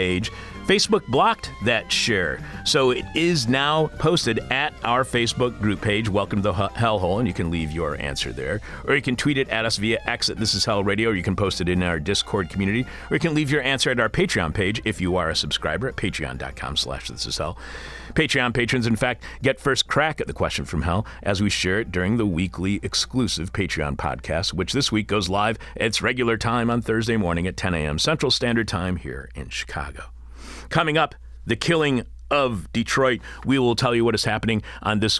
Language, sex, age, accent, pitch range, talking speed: English, male, 50-69, American, 85-120 Hz, 210 wpm